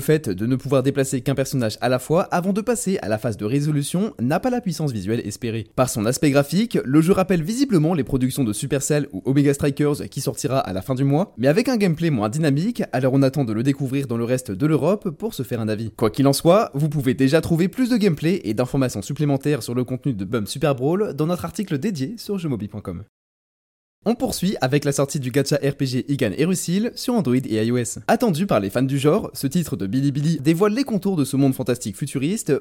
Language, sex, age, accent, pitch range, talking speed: French, male, 20-39, French, 125-175 Hz, 235 wpm